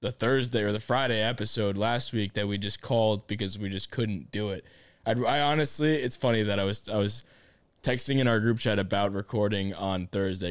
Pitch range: 100-130 Hz